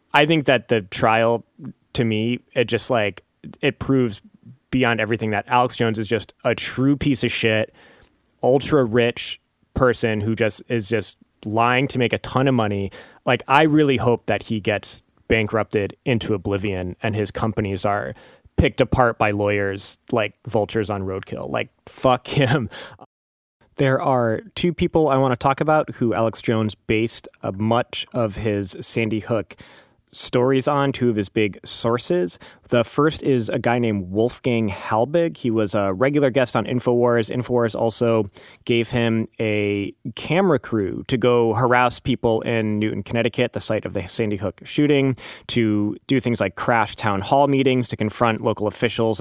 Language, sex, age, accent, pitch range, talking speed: English, male, 20-39, American, 105-125 Hz, 165 wpm